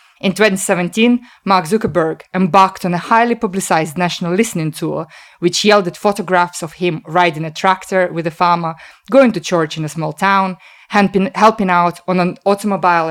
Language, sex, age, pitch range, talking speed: English, female, 20-39, 170-205 Hz, 160 wpm